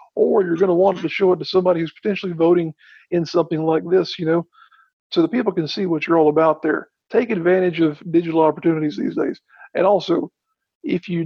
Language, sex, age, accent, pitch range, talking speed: English, male, 50-69, American, 160-195 Hz, 215 wpm